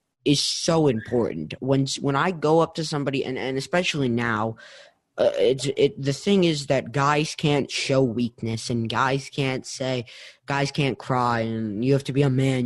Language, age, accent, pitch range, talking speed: English, 20-39, American, 115-140 Hz, 185 wpm